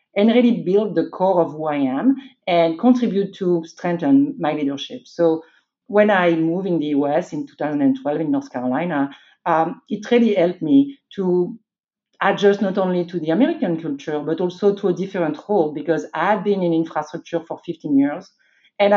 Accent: French